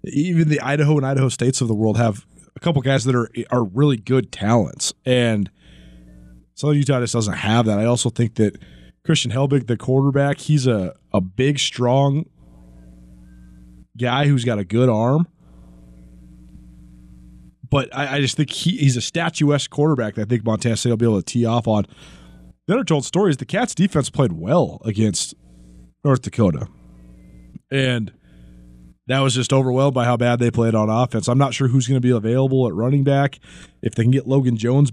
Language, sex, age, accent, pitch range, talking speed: English, male, 30-49, American, 105-140 Hz, 185 wpm